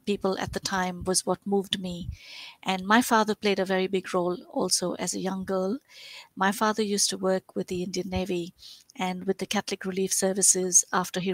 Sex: female